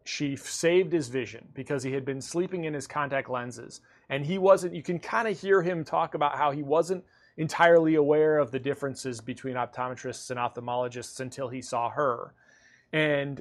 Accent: American